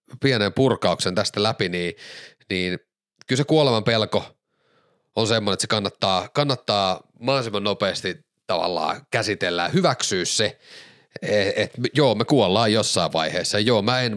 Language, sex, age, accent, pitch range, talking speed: Finnish, male, 30-49, native, 95-125 Hz, 135 wpm